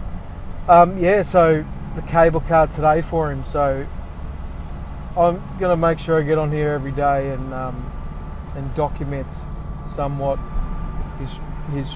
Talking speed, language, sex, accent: 140 wpm, English, male, Australian